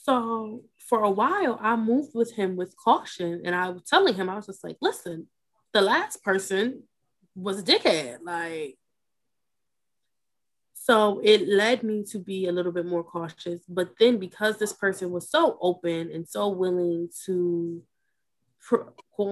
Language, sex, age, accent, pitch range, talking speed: English, female, 20-39, American, 175-235 Hz, 160 wpm